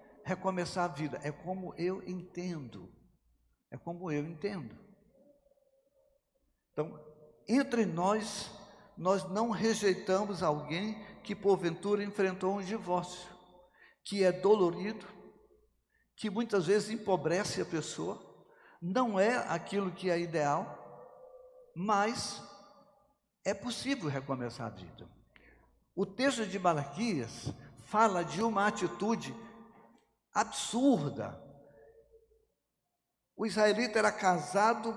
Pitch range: 175-225 Hz